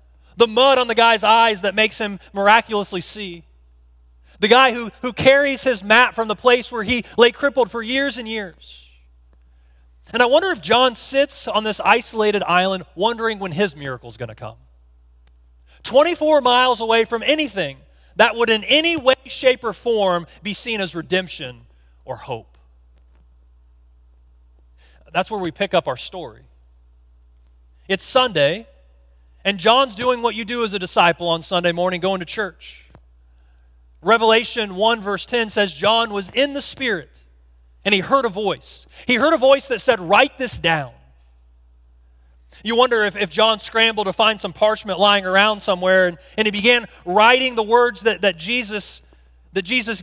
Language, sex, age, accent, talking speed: English, male, 30-49, American, 160 wpm